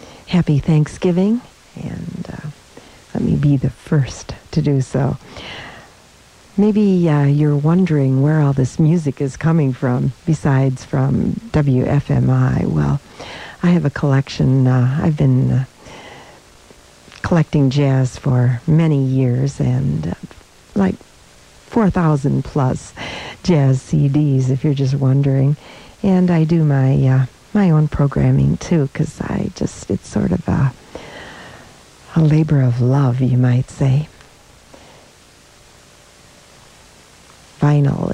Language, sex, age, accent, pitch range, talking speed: English, female, 50-69, American, 130-155 Hz, 115 wpm